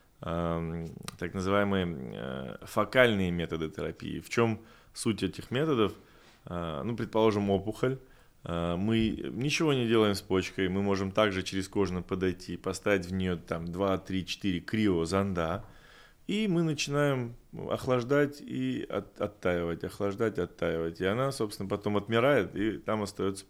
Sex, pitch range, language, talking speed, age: male, 90-115 Hz, Russian, 120 wpm, 20-39